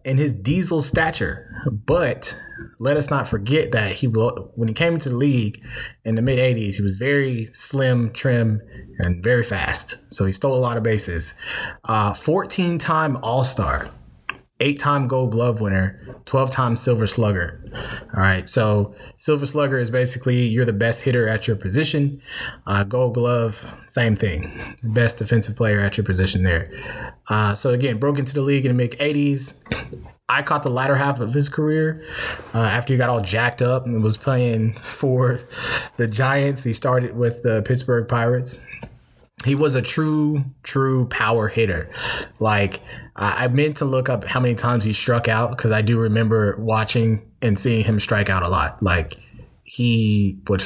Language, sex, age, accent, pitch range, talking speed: English, male, 20-39, American, 105-130 Hz, 170 wpm